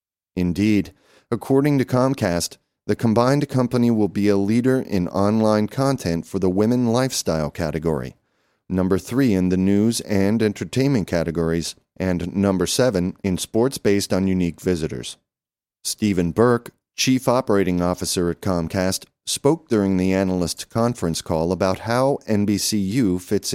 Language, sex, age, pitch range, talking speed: English, male, 40-59, 90-115 Hz, 135 wpm